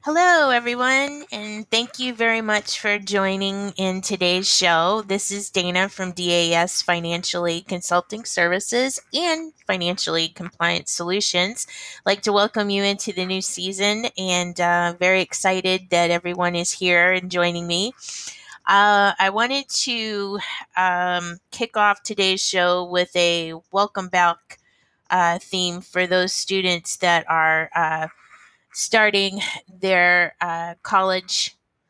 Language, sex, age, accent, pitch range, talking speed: English, female, 20-39, American, 170-200 Hz, 130 wpm